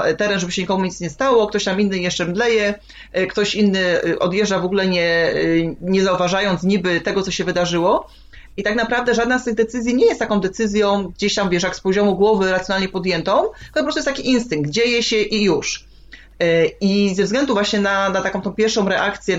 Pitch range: 180-210 Hz